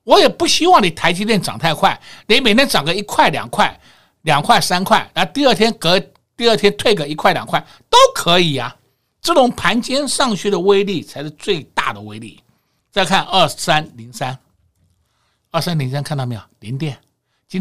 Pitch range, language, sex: 140-215 Hz, Chinese, male